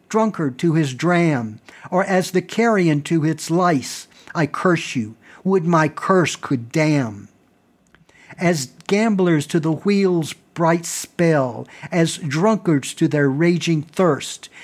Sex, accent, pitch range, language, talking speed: male, American, 145-185 Hz, English, 130 wpm